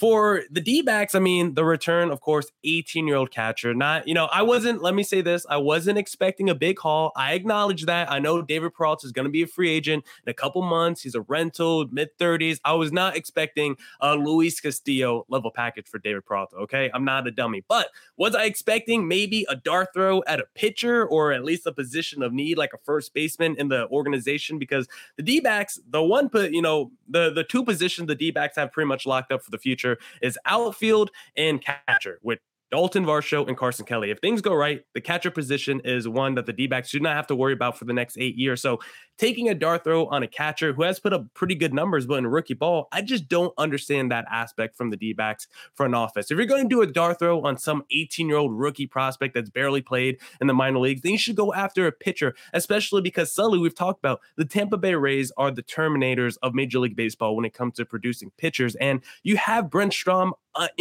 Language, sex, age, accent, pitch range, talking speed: English, male, 20-39, American, 135-185 Hz, 225 wpm